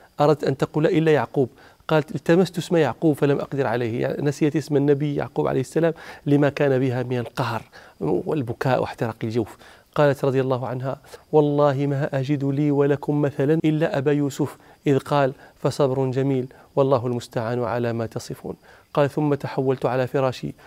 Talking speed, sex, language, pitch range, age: 155 wpm, male, Arabic, 125-150 Hz, 40-59